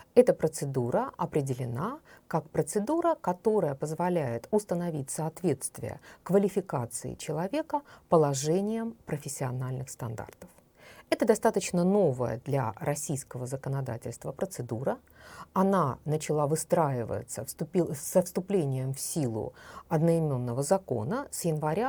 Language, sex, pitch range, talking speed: Russian, female, 135-200 Hz, 90 wpm